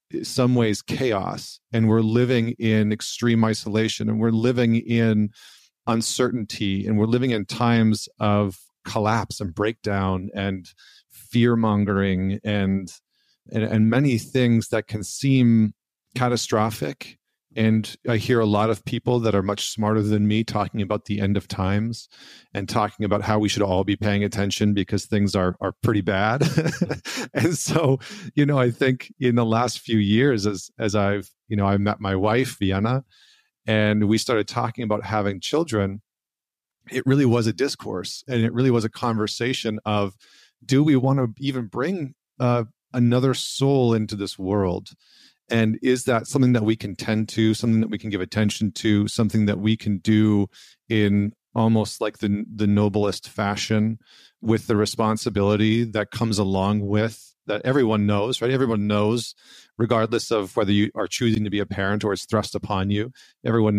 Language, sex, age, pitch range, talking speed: English, male, 40-59, 105-120 Hz, 170 wpm